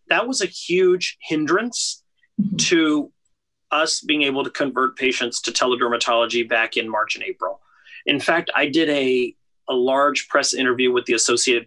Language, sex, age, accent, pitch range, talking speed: English, male, 30-49, American, 125-165 Hz, 160 wpm